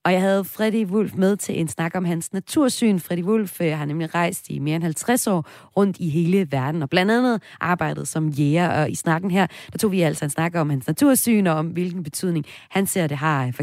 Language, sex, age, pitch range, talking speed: Danish, female, 30-49, 155-205 Hz, 240 wpm